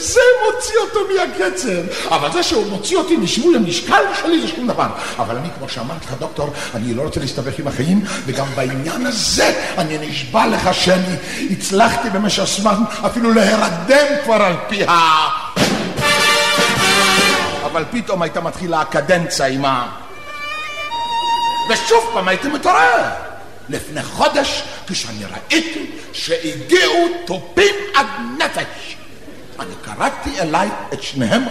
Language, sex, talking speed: Hebrew, male, 130 wpm